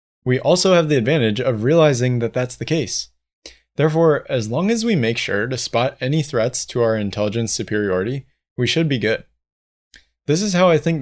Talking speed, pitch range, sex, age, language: 190 wpm, 110-140 Hz, male, 20-39, English